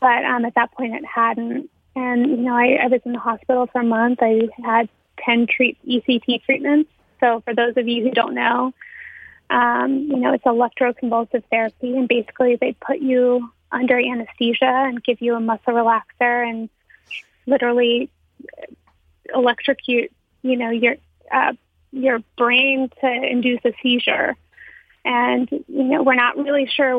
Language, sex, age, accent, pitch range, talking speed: English, female, 20-39, American, 235-260 Hz, 160 wpm